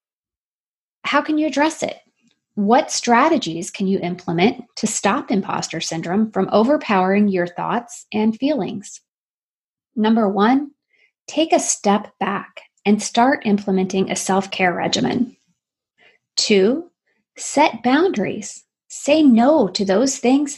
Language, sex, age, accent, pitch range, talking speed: English, female, 30-49, American, 195-270 Hz, 115 wpm